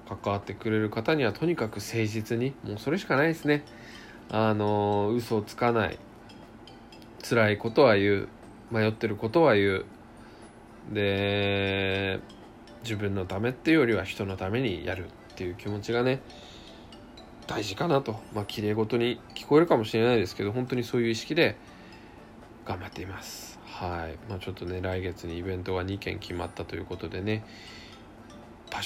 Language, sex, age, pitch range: Japanese, male, 20-39, 95-115 Hz